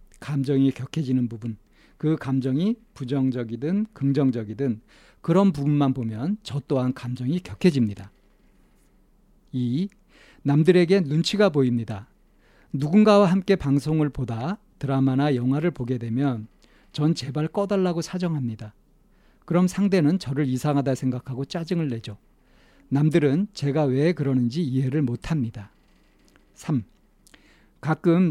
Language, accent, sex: Korean, native, male